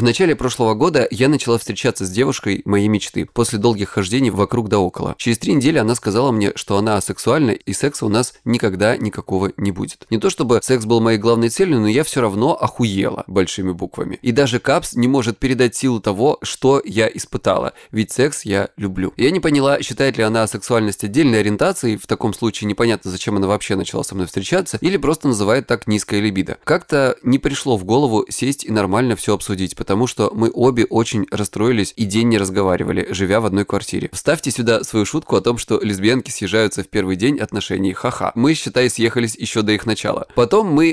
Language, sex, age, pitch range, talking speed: Russian, male, 20-39, 105-125 Hz, 200 wpm